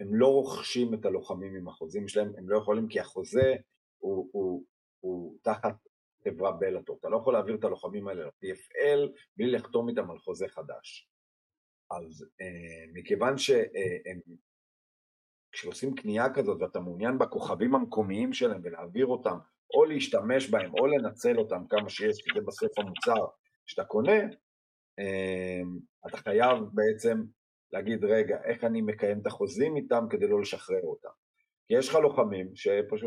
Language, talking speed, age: Hebrew, 140 wpm, 40-59